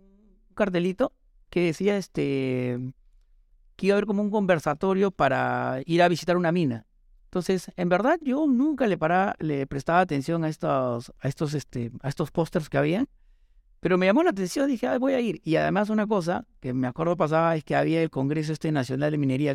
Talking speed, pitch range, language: 205 wpm, 135-190 Hz, Spanish